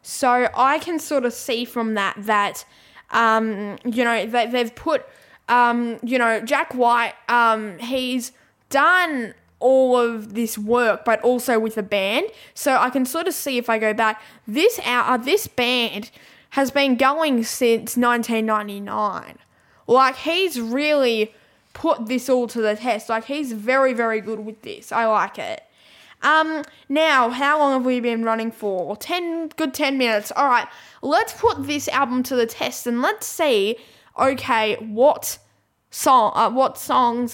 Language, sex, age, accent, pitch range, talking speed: English, female, 10-29, Australian, 225-285 Hz, 160 wpm